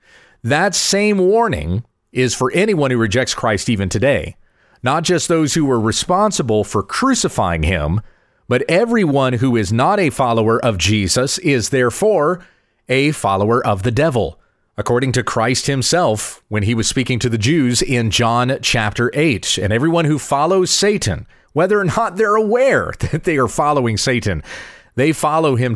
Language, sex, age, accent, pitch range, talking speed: English, male, 40-59, American, 115-160 Hz, 160 wpm